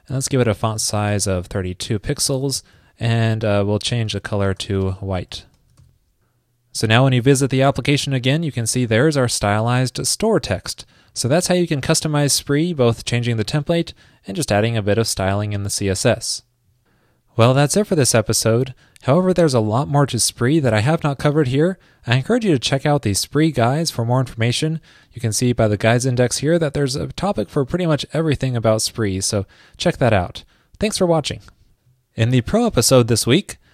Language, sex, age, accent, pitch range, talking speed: English, male, 20-39, American, 115-150 Hz, 205 wpm